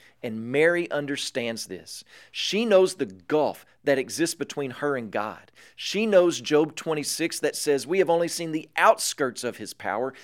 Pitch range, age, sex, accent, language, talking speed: 120-160 Hz, 40-59, male, American, English, 170 wpm